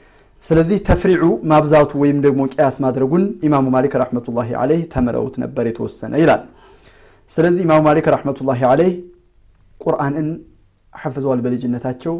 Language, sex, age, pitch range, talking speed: Amharic, male, 30-49, 120-150 Hz, 130 wpm